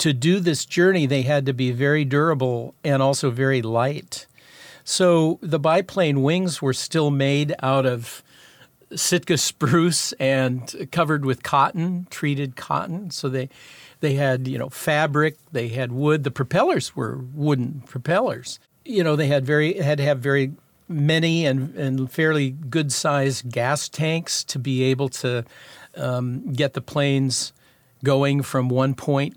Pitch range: 130-155 Hz